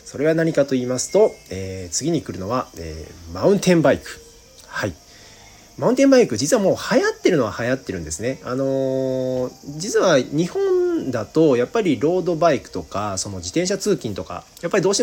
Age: 40-59